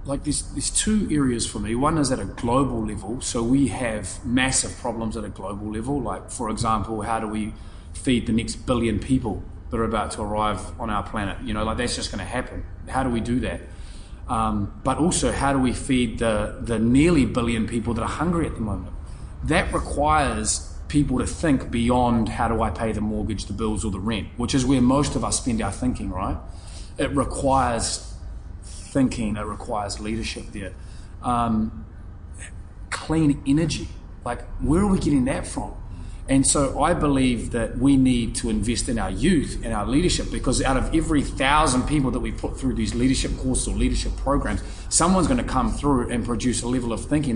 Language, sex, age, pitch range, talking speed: English, male, 20-39, 100-130 Hz, 200 wpm